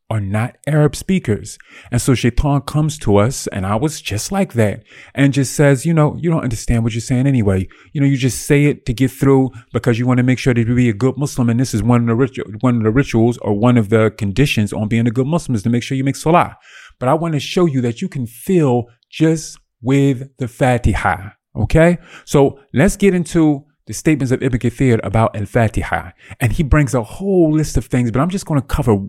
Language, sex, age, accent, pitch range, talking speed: English, male, 30-49, American, 115-145 Hz, 240 wpm